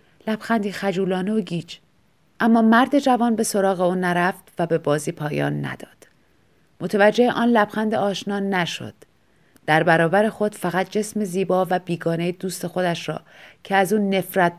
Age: 30-49